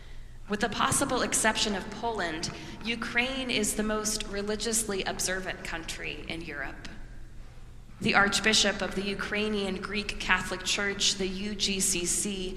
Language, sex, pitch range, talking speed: English, female, 175-210 Hz, 120 wpm